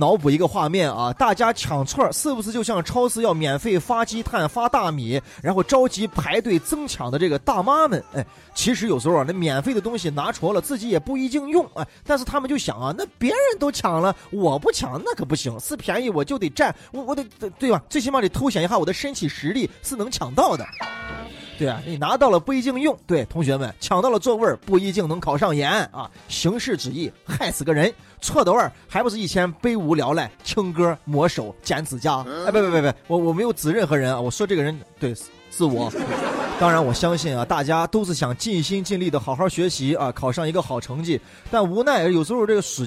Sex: male